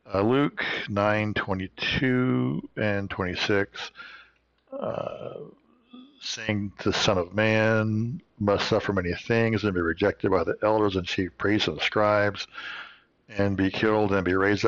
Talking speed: 145 wpm